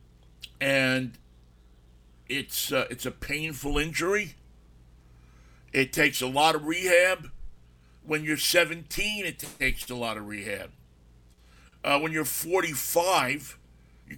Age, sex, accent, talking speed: 50-69, male, American, 115 wpm